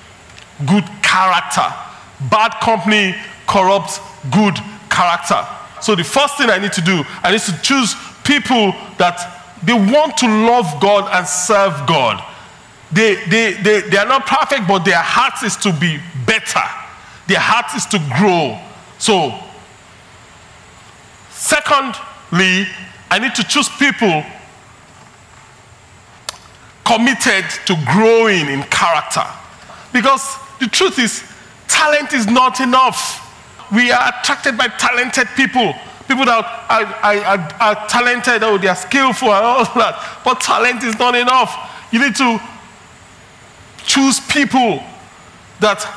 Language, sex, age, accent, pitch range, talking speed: English, male, 40-59, Nigerian, 185-250 Hz, 130 wpm